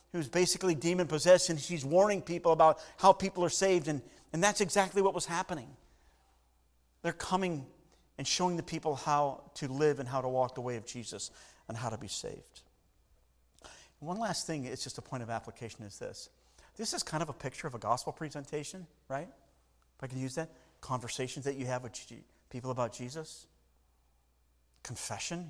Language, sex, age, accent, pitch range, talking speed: English, male, 40-59, American, 100-145 Hz, 185 wpm